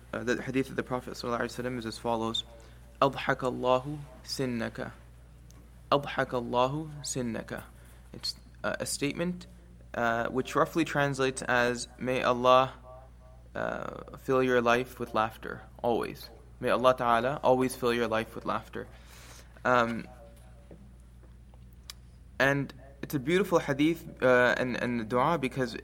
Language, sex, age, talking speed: English, male, 20-39, 120 wpm